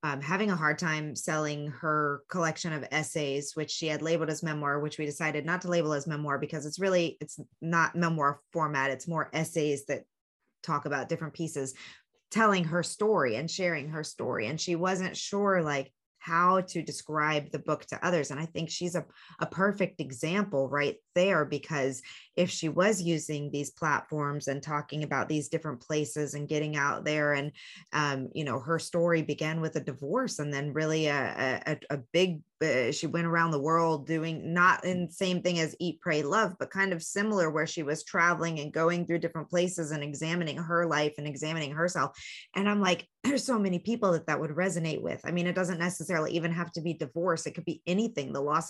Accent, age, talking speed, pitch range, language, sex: American, 20-39, 200 wpm, 150-175 Hz, English, female